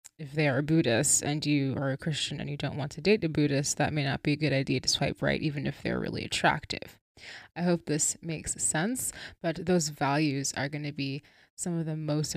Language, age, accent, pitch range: English, 20-39, American, 150-175 Hz